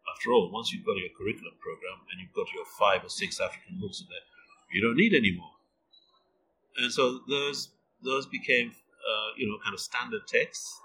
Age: 50-69